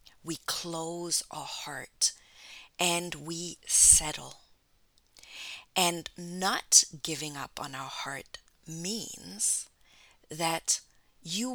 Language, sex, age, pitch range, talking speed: English, female, 40-59, 155-205 Hz, 90 wpm